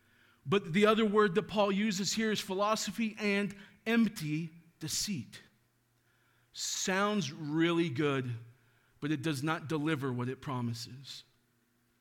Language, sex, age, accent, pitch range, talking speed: English, male, 40-59, American, 135-205 Hz, 120 wpm